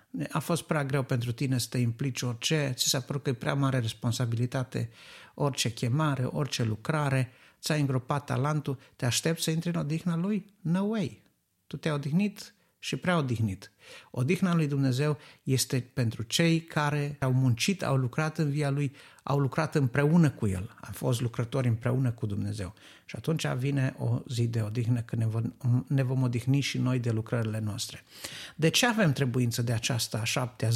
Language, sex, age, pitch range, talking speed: Romanian, male, 50-69, 120-155 Hz, 170 wpm